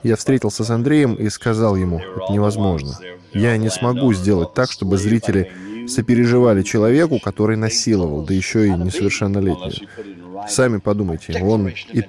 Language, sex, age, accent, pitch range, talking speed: Russian, male, 10-29, native, 95-115 Hz, 140 wpm